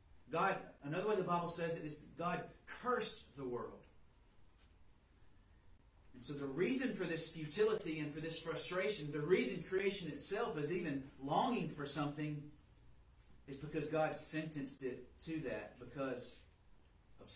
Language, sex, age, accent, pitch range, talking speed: English, male, 30-49, American, 130-175 Hz, 145 wpm